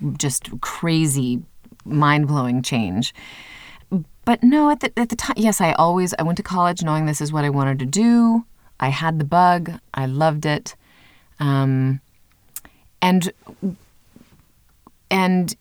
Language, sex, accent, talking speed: English, female, American, 140 wpm